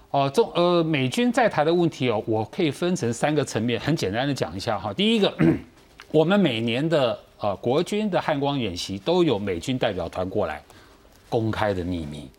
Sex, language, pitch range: male, Chinese, 110-160 Hz